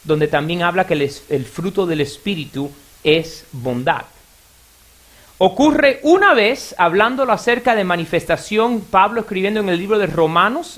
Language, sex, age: Spanish, male, 30-49